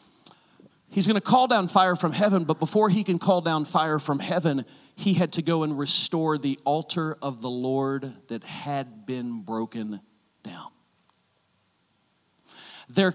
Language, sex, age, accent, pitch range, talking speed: English, male, 40-59, American, 125-180 Hz, 155 wpm